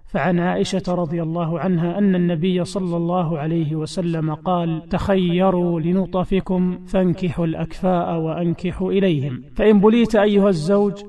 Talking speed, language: 120 wpm, Arabic